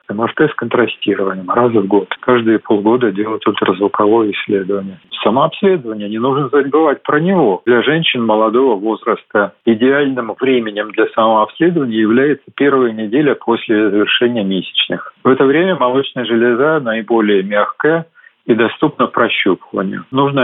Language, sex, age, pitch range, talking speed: Russian, male, 40-59, 110-130 Hz, 125 wpm